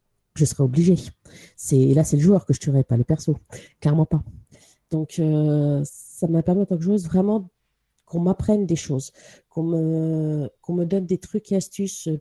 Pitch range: 145-180 Hz